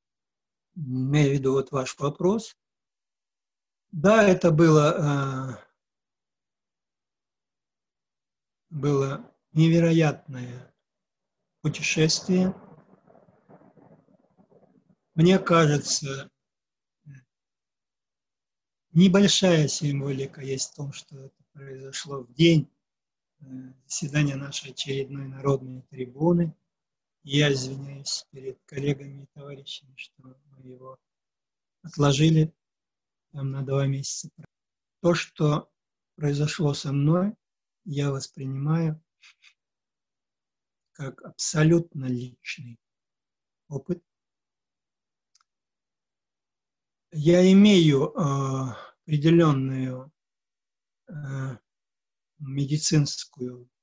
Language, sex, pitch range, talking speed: Russian, male, 135-160 Hz, 65 wpm